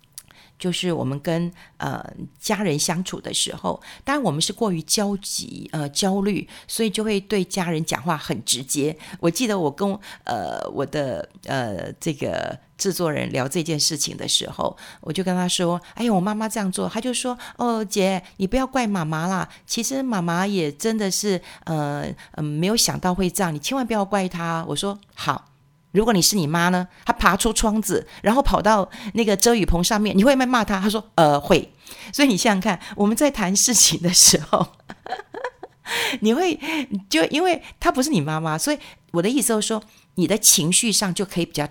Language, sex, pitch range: Chinese, female, 165-220 Hz